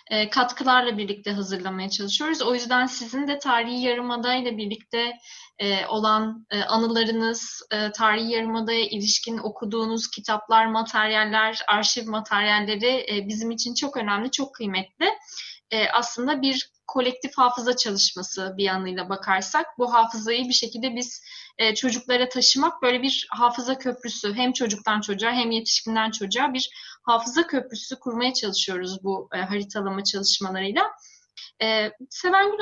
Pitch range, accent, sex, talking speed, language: 215-260 Hz, native, female, 125 wpm, Turkish